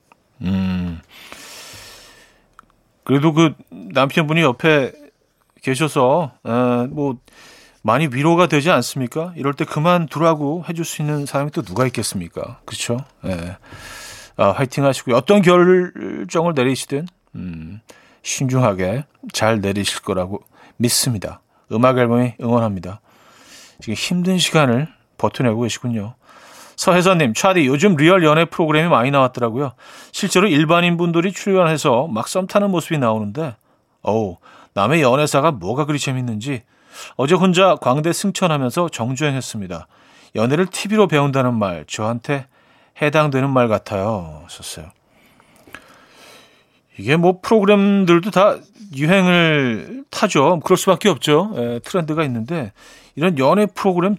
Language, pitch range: Korean, 115-170 Hz